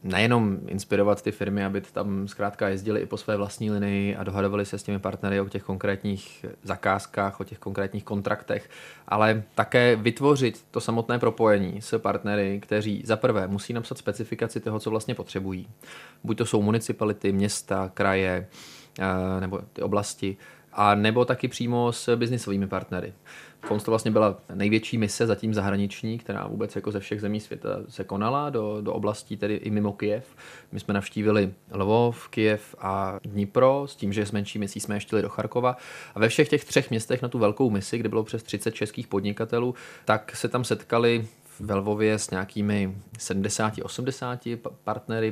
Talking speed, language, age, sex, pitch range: 170 wpm, Czech, 20-39, male, 100-115 Hz